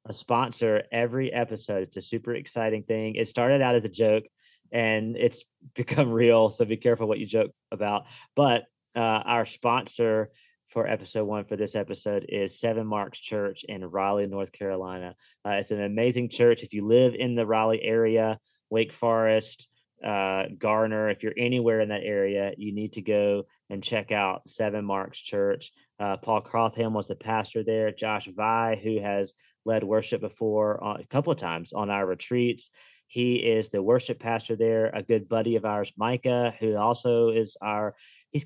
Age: 30-49